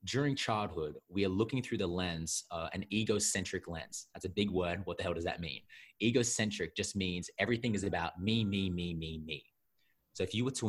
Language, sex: English, male